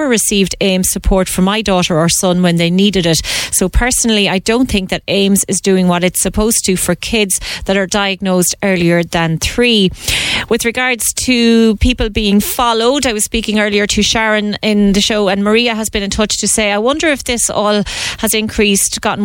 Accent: Irish